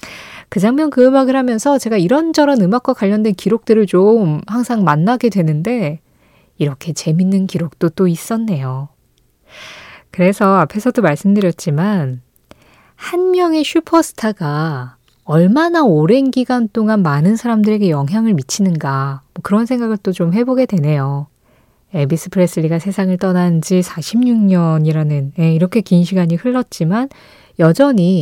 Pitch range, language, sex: 165-235 Hz, Korean, female